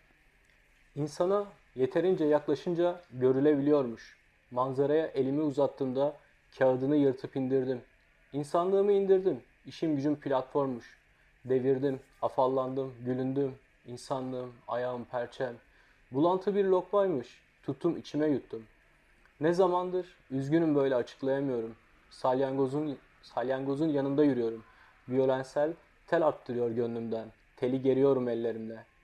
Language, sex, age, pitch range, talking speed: Turkish, male, 30-49, 125-150 Hz, 90 wpm